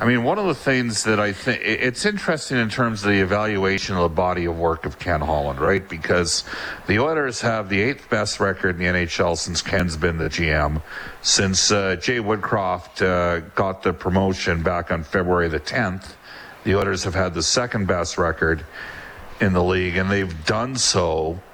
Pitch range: 85-100 Hz